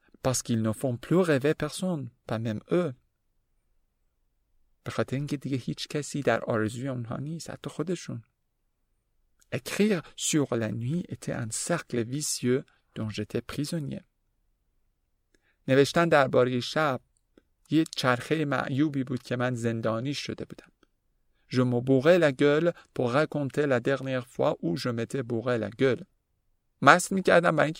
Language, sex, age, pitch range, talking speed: Persian, male, 50-69, 110-145 Hz, 115 wpm